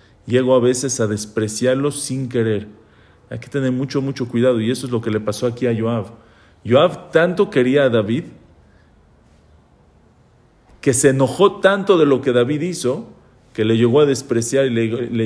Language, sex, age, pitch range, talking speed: English, male, 40-59, 115-150 Hz, 175 wpm